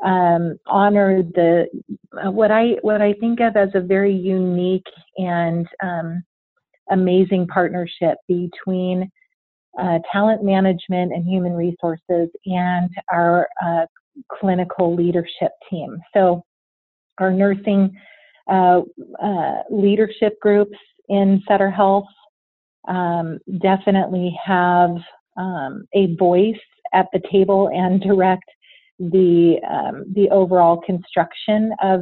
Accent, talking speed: American, 110 wpm